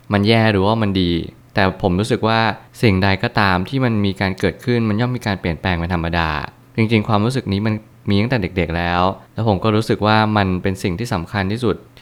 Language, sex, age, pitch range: Thai, male, 20-39, 95-115 Hz